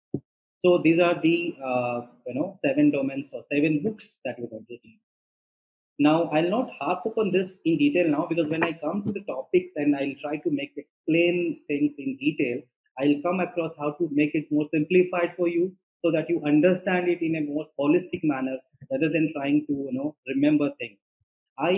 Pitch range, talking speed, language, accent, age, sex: 130-170 Hz, 200 wpm, English, Indian, 30-49, male